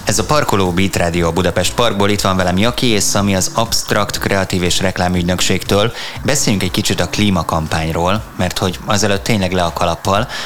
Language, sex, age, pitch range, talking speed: Hungarian, male, 20-39, 90-105 Hz, 170 wpm